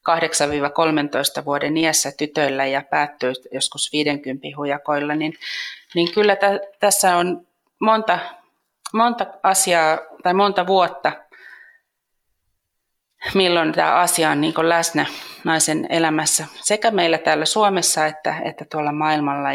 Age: 30-49